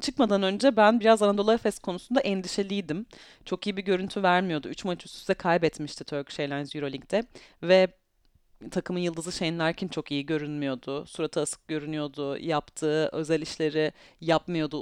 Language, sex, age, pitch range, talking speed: Turkish, female, 30-49, 165-220 Hz, 145 wpm